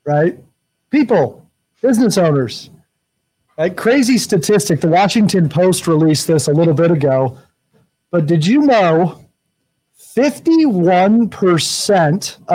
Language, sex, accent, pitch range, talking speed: English, male, American, 155-200 Hz, 100 wpm